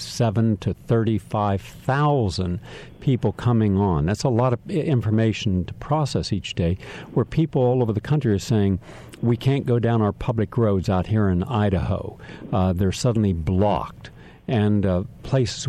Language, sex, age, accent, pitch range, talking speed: English, male, 50-69, American, 105-135 Hz, 155 wpm